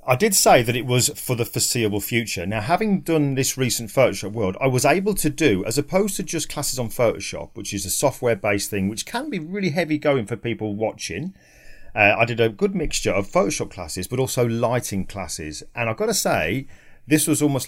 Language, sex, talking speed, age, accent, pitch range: English, male, 215 wpm, 40-59, British, 105-150 Hz